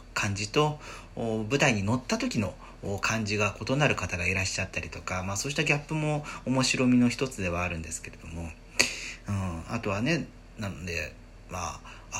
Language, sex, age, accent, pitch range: Japanese, male, 40-59, native, 100-140 Hz